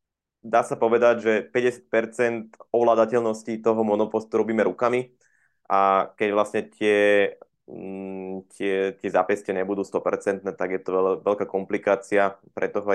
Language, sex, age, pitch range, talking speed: Slovak, male, 20-39, 95-105 Hz, 125 wpm